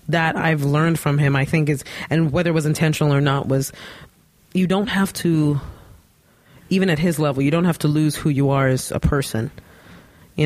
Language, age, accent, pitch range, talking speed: English, 30-49, American, 140-165 Hz, 205 wpm